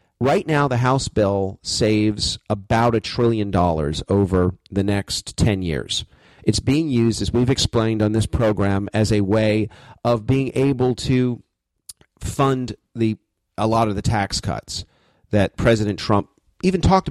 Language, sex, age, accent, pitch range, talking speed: English, male, 40-59, American, 105-135 Hz, 155 wpm